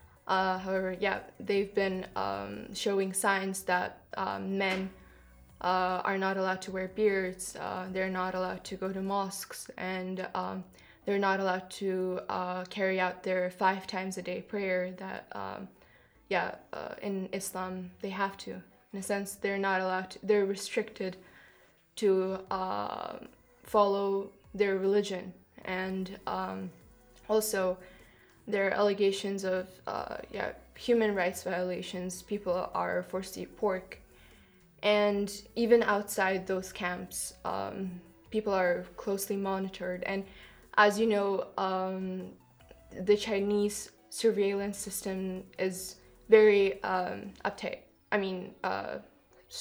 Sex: female